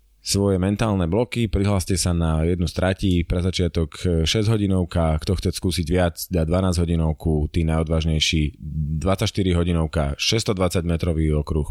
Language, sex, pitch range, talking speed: Slovak, male, 80-100 Hz, 135 wpm